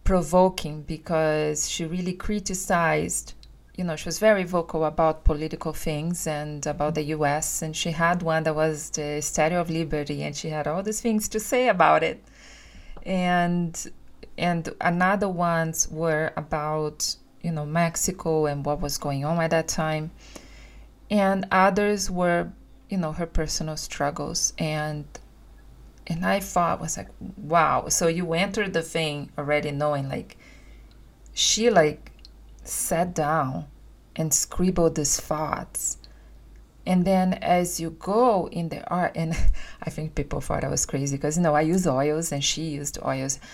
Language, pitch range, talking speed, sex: English, 150-175 Hz, 155 wpm, female